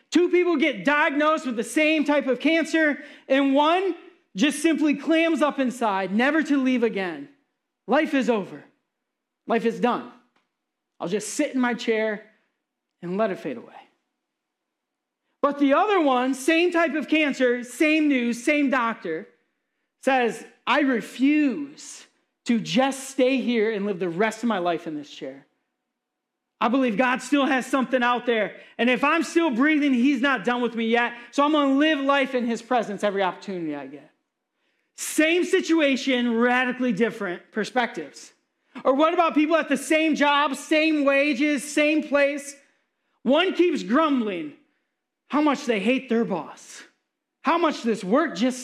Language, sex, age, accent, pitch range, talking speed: English, male, 40-59, American, 230-300 Hz, 160 wpm